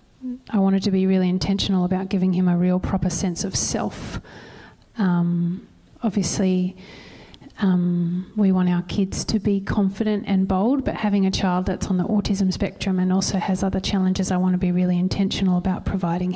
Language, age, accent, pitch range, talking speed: English, 30-49, Australian, 185-205 Hz, 180 wpm